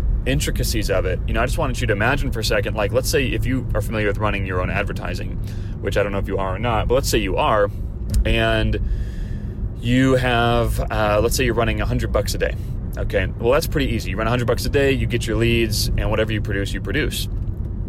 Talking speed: 250 wpm